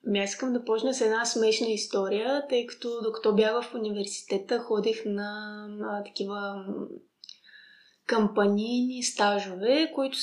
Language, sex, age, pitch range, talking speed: Bulgarian, female, 20-39, 210-260 Hz, 125 wpm